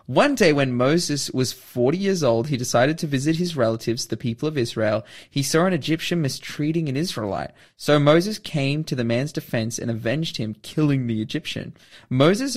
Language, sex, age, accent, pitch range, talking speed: English, male, 20-39, Australian, 120-165 Hz, 185 wpm